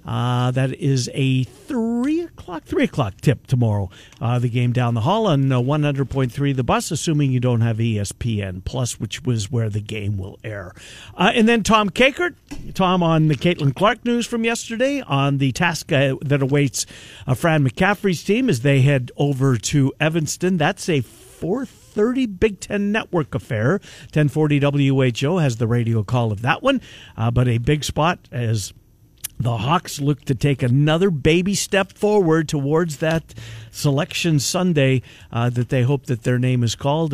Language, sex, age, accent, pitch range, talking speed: English, male, 50-69, American, 125-170 Hz, 180 wpm